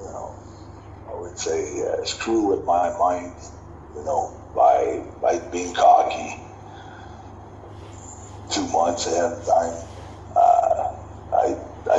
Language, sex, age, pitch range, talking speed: Arabic, male, 60-79, 90-115 Hz, 105 wpm